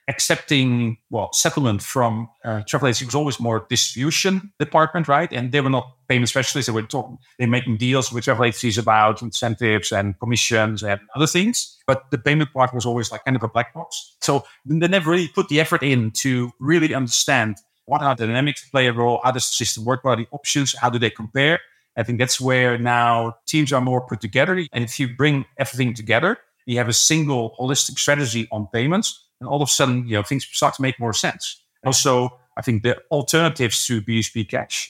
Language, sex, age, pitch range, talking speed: English, male, 30-49, 115-140 Hz, 210 wpm